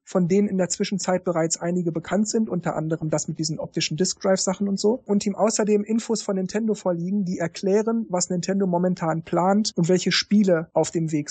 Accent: German